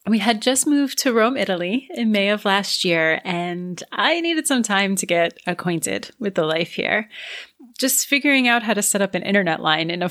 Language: English